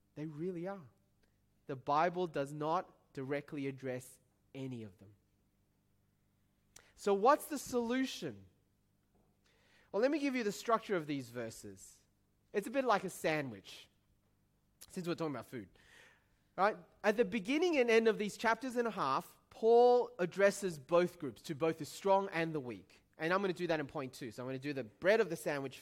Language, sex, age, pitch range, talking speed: English, male, 30-49, 130-195 Hz, 185 wpm